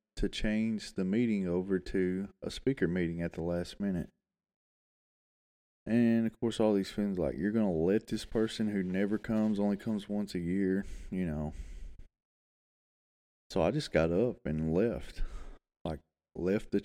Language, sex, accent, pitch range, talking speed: English, male, American, 85-110 Hz, 165 wpm